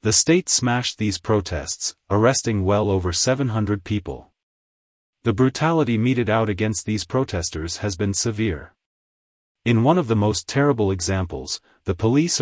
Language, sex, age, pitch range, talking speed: English, male, 30-49, 90-120 Hz, 140 wpm